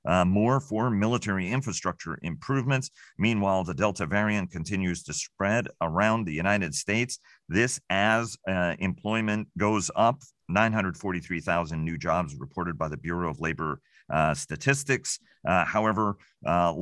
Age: 40-59